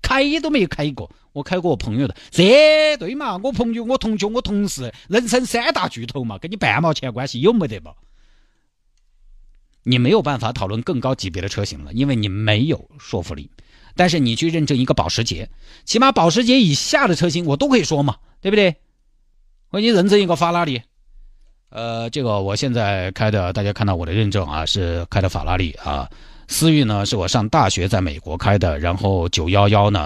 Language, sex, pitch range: Chinese, male, 95-155 Hz